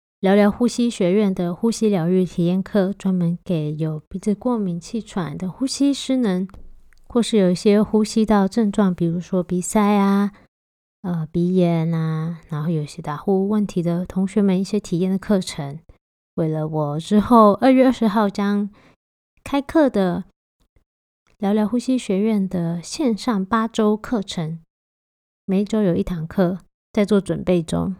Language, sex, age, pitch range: Chinese, female, 20-39, 180-215 Hz